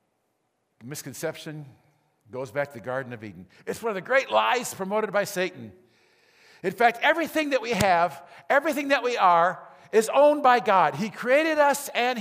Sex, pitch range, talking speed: male, 175-255 Hz, 170 wpm